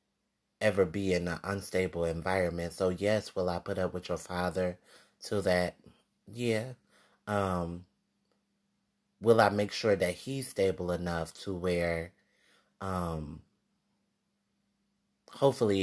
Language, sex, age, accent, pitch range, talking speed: English, male, 30-49, American, 90-115 Hz, 120 wpm